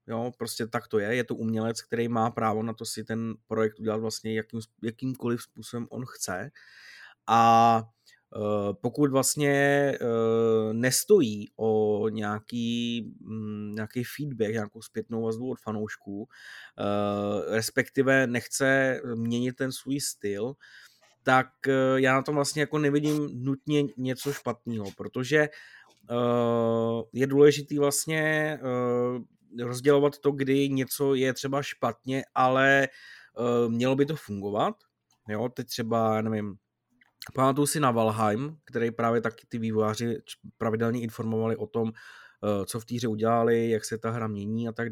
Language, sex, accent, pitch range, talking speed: Czech, male, native, 110-140 Hz, 140 wpm